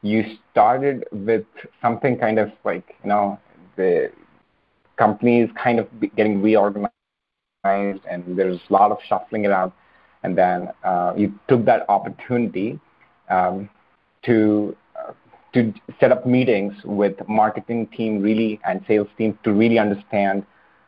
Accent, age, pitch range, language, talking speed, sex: Indian, 30-49, 100-115 Hz, English, 130 wpm, male